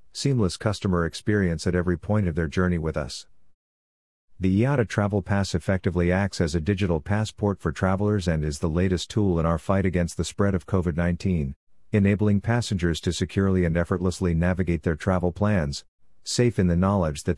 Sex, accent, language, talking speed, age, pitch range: male, American, English, 175 wpm, 50-69, 85-100 Hz